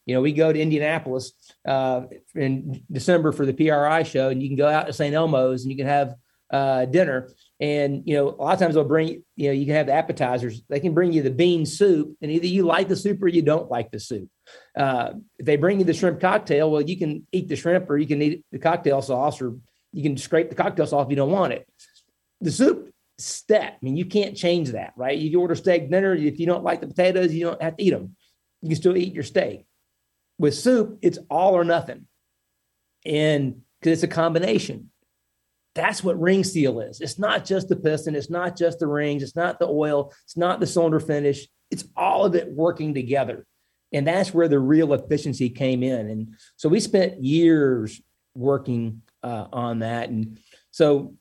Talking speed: 220 wpm